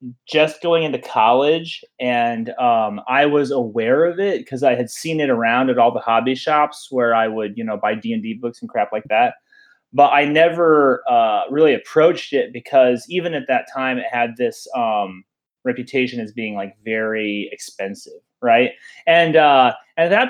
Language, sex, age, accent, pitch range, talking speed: English, male, 30-49, American, 120-160 Hz, 185 wpm